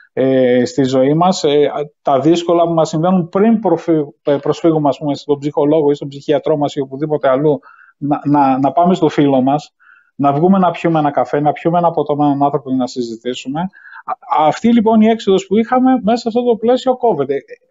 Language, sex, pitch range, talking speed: Greek, male, 150-225 Hz, 180 wpm